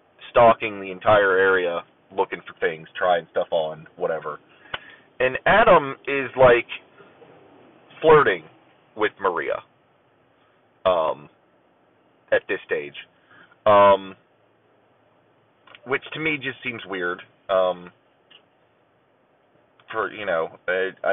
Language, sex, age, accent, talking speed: English, male, 30-49, American, 95 wpm